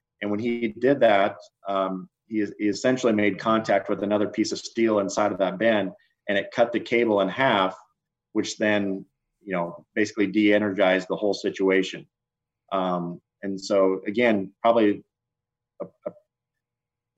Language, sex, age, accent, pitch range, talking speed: English, male, 30-49, American, 100-115 Hz, 150 wpm